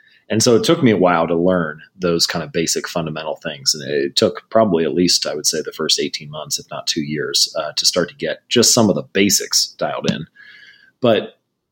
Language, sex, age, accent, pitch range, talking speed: English, male, 30-49, American, 85-115 Hz, 230 wpm